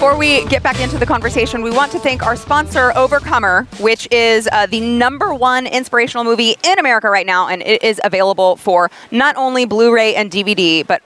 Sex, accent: female, American